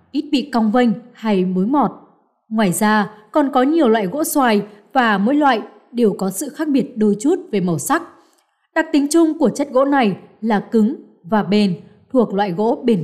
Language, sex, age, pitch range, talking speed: Vietnamese, female, 20-39, 205-280 Hz, 200 wpm